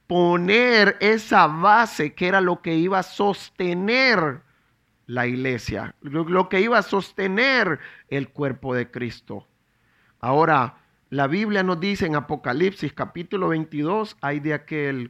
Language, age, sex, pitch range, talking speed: English, 40-59, male, 155-210 Hz, 130 wpm